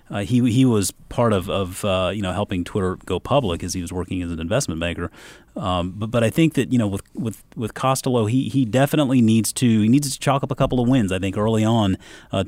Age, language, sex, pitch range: 30-49, English, male, 95-120 Hz